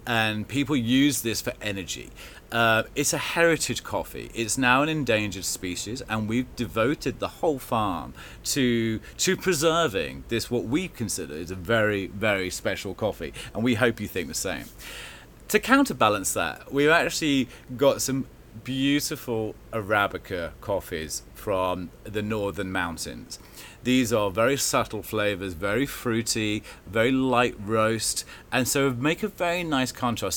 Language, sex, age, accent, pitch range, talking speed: English, male, 30-49, British, 100-130 Hz, 145 wpm